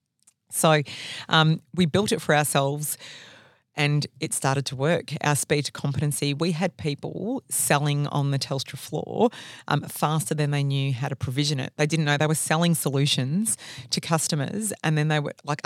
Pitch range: 145-175 Hz